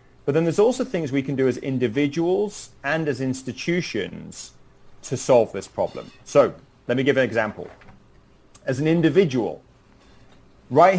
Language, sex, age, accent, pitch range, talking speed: English, male, 30-49, British, 120-150 Hz, 145 wpm